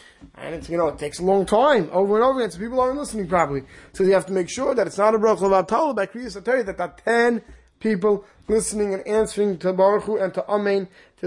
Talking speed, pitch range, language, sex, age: 250 wpm, 160-205 Hz, English, male, 20-39